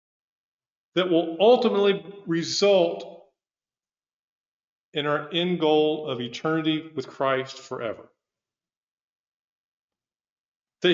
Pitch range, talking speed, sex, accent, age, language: 125-190 Hz, 75 wpm, male, American, 50-69, English